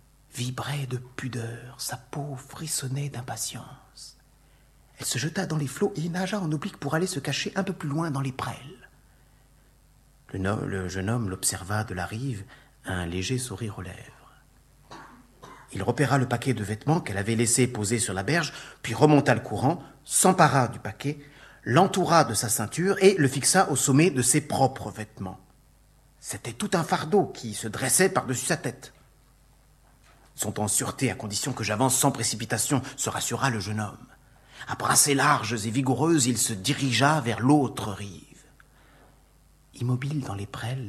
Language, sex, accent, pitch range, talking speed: French, male, French, 115-145 Hz, 165 wpm